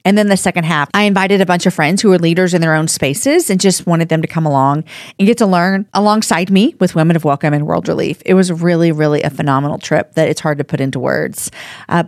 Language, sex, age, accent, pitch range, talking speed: English, female, 40-59, American, 160-215 Hz, 265 wpm